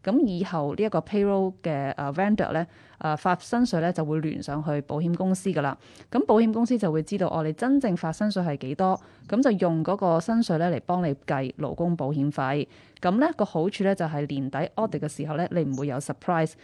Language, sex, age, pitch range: Chinese, female, 20-39, 155-200 Hz